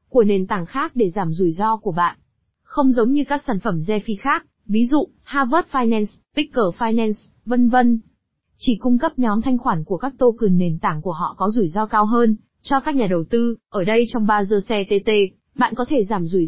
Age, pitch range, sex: 20-39, 205-245 Hz, female